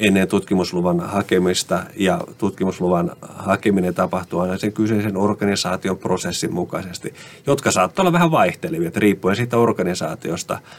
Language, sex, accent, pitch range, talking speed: Finnish, male, native, 95-120 Hz, 115 wpm